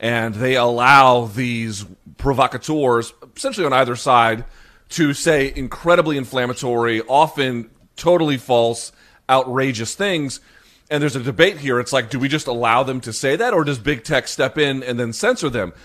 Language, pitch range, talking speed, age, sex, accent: English, 120-145 Hz, 165 wpm, 30-49, male, American